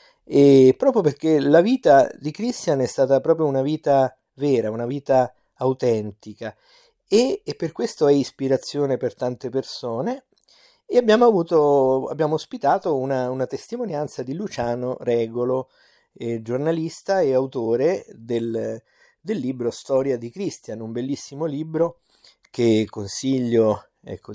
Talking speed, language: 130 wpm, Italian